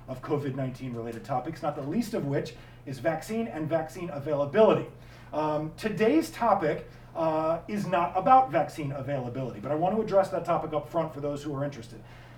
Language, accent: English, American